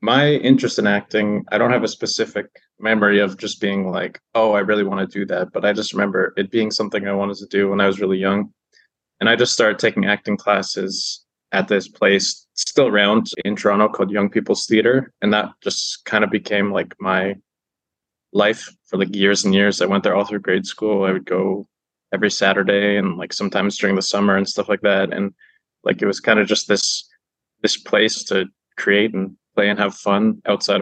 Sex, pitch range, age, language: male, 100-105 Hz, 20-39, English